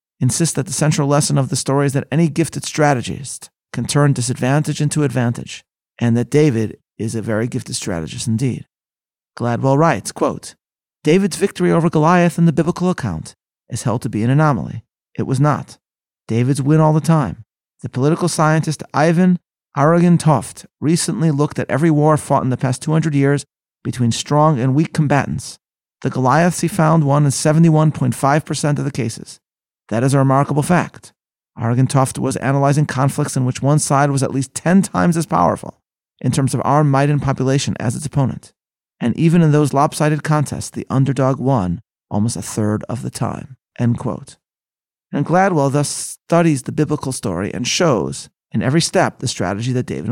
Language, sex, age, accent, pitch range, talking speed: English, male, 30-49, American, 125-155 Hz, 175 wpm